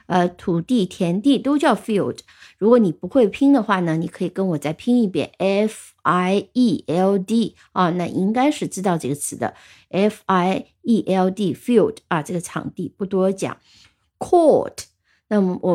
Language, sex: Chinese, female